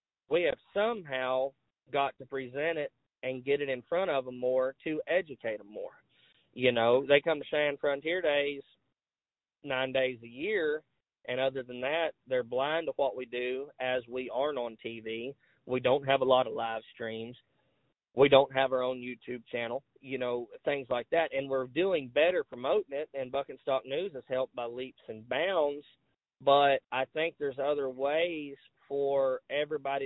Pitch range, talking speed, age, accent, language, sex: 125-145 Hz, 180 wpm, 30-49, American, English, male